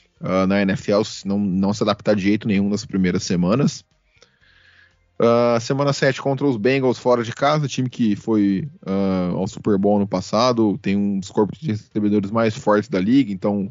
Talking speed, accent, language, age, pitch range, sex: 185 wpm, Brazilian, Portuguese, 20-39, 100-120 Hz, male